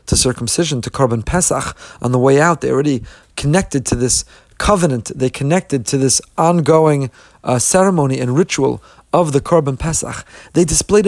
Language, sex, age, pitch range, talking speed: English, male, 40-59, 130-175 Hz, 160 wpm